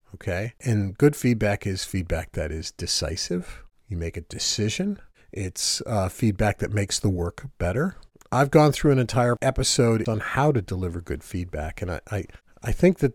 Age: 40-59